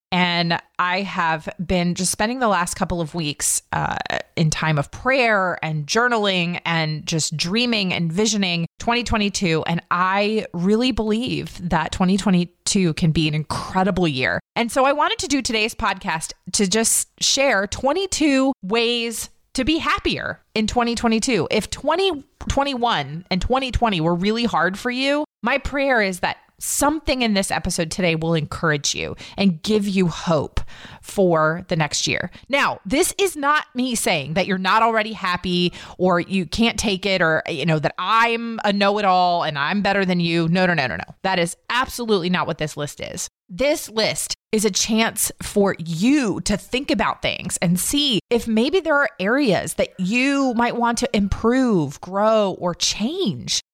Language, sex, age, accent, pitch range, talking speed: English, female, 30-49, American, 175-235 Hz, 165 wpm